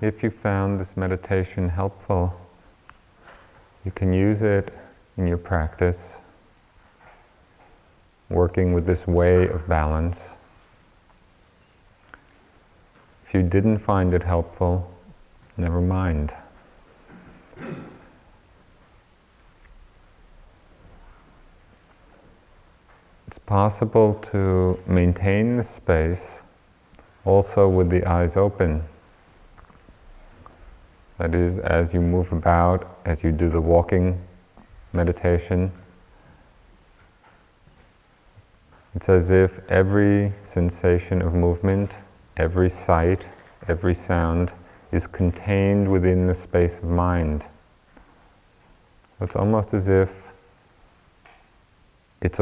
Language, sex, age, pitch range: English, male, 30-49, 85-95 Hz